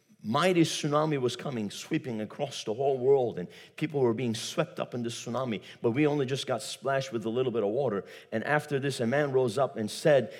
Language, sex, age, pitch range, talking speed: English, male, 50-69, 120-150 Hz, 225 wpm